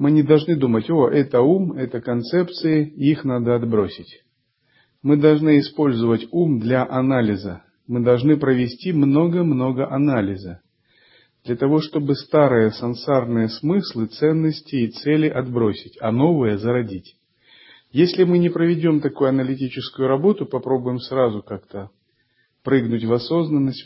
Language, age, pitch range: Russian, 40-59, 115-140 Hz